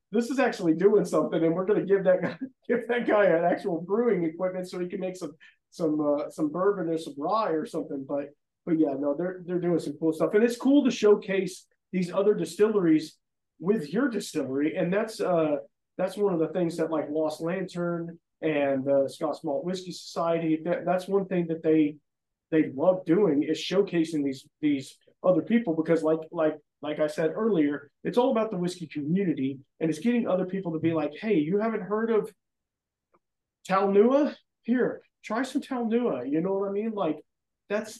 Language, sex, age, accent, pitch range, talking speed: English, male, 40-59, American, 150-195 Hz, 195 wpm